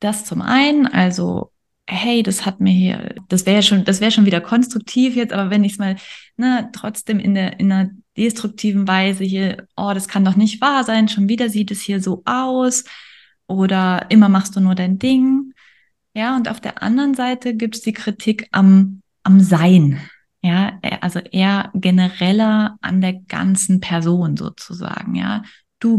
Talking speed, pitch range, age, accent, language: 180 wpm, 185-220 Hz, 20-39, German, German